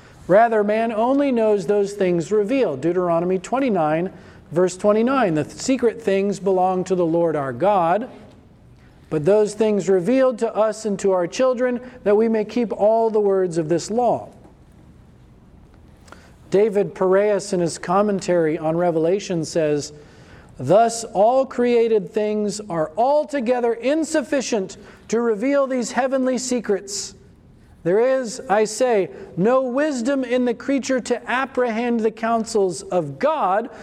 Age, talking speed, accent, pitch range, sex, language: 40-59, 135 wpm, American, 180-245 Hz, male, English